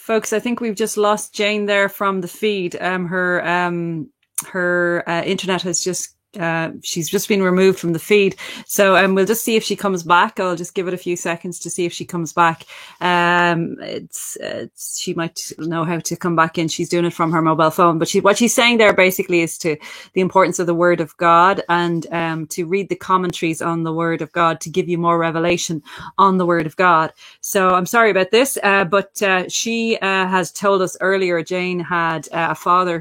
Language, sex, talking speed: English, female, 225 wpm